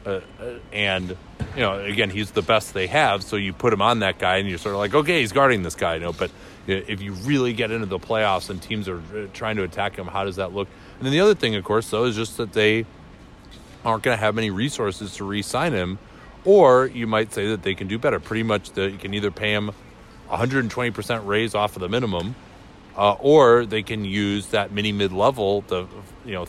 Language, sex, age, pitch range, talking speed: English, male, 30-49, 95-115 Hz, 240 wpm